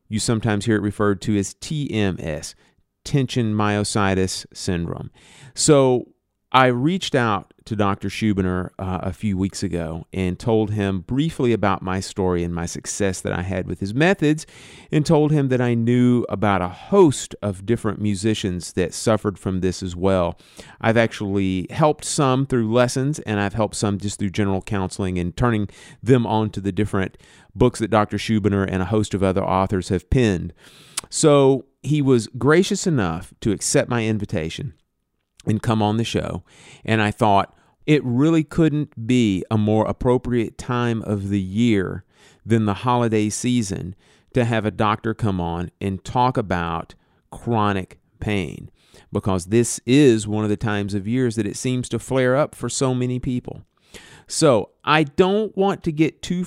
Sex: male